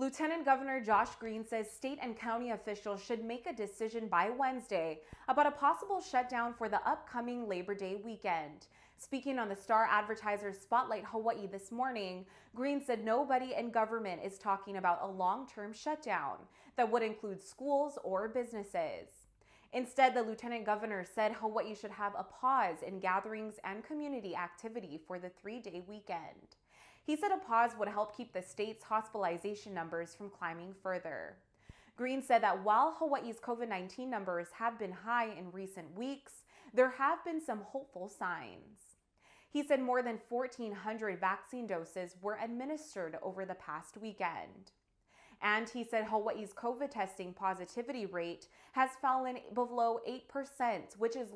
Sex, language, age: female, English, 20-39